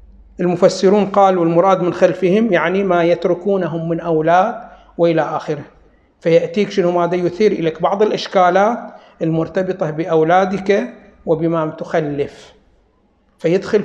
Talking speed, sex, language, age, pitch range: 105 wpm, male, Arabic, 60-79, 160-200 Hz